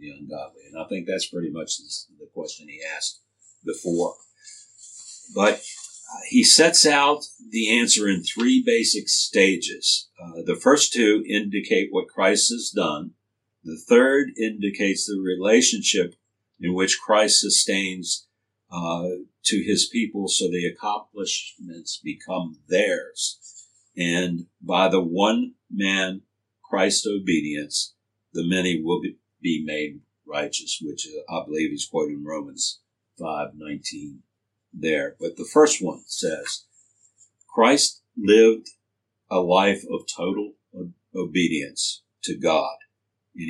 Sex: male